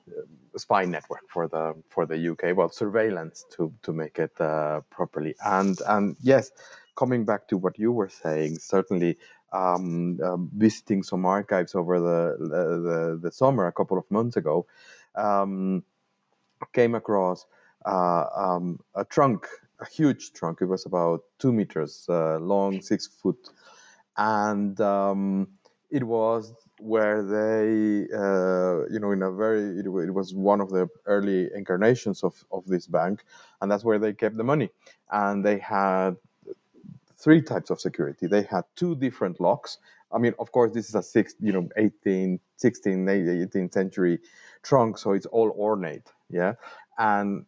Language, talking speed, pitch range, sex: English, 160 wpm, 90-110 Hz, male